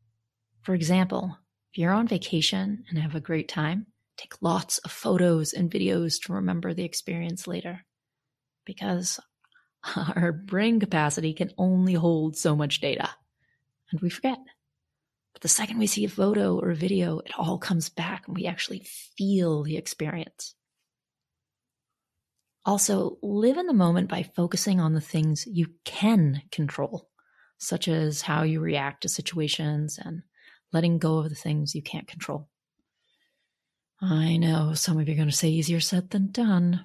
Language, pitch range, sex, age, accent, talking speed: English, 160-195 Hz, female, 30-49, American, 160 wpm